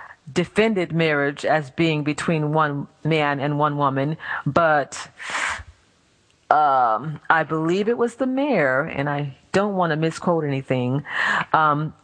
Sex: female